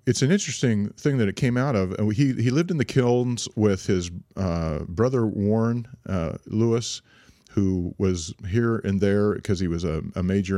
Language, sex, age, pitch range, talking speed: English, male, 40-59, 90-110 Hz, 185 wpm